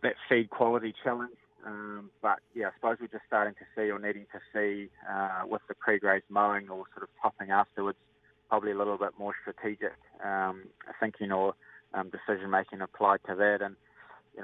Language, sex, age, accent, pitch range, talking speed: English, male, 20-39, Australian, 95-105 Hz, 185 wpm